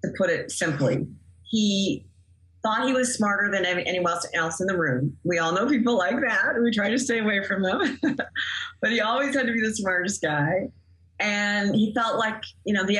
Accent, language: American, English